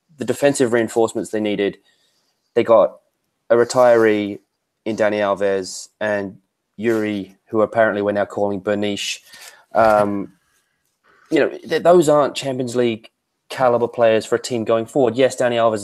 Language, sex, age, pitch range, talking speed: English, male, 20-39, 110-130 Hz, 140 wpm